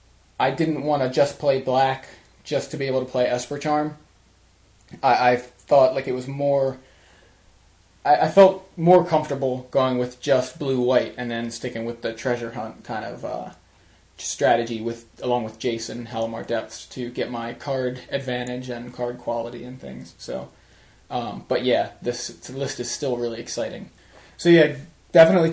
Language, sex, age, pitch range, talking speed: English, male, 20-39, 120-150 Hz, 170 wpm